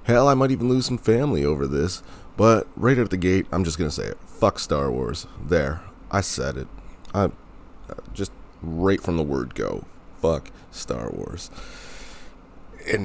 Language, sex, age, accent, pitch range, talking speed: English, male, 30-49, American, 75-95 Hz, 175 wpm